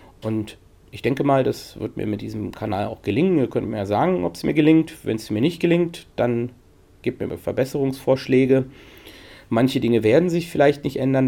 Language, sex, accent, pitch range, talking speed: German, male, German, 105-130 Hz, 195 wpm